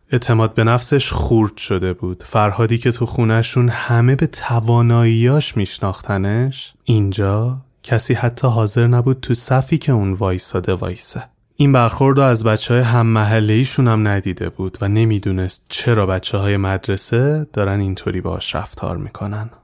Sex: male